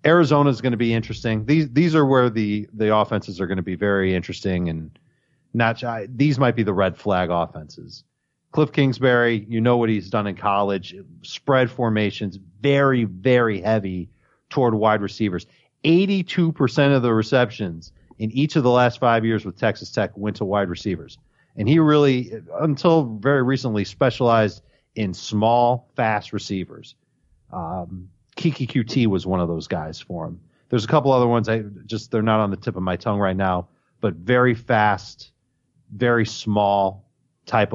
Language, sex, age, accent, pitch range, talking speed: English, male, 40-59, American, 100-130 Hz, 170 wpm